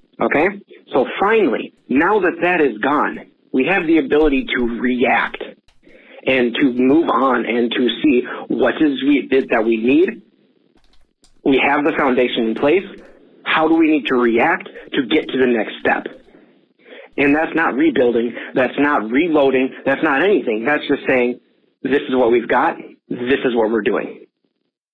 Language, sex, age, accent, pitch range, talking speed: English, male, 40-59, American, 125-160 Hz, 165 wpm